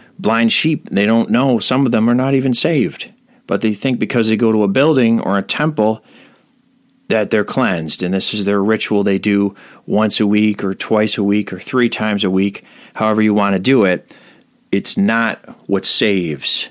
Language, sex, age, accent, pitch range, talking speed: English, male, 40-59, American, 105-150 Hz, 200 wpm